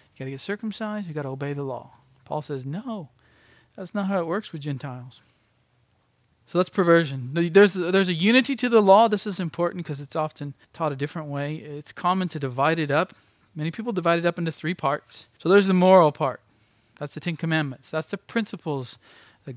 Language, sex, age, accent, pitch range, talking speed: English, male, 40-59, American, 135-170 Hz, 210 wpm